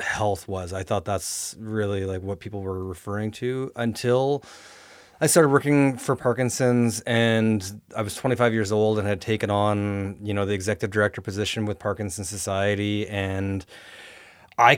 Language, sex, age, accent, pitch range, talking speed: English, male, 30-49, American, 100-125 Hz, 160 wpm